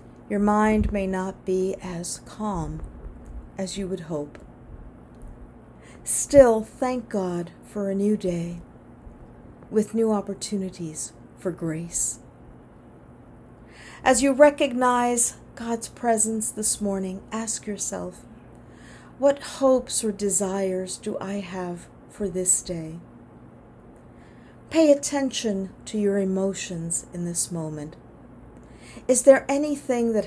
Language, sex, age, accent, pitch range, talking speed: English, female, 40-59, American, 180-230 Hz, 105 wpm